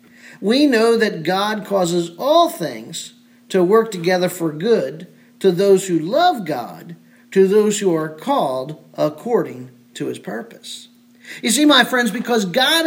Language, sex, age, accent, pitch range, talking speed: English, male, 50-69, American, 195-250 Hz, 150 wpm